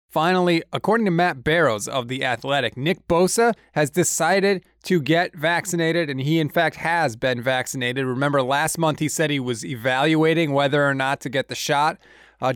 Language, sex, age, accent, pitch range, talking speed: English, male, 20-39, American, 125-170 Hz, 180 wpm